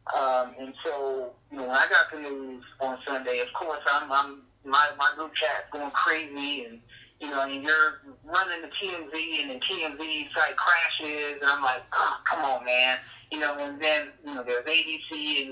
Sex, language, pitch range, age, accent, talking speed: male, English, 135-160 Hz, 30-49, American, 195 wpm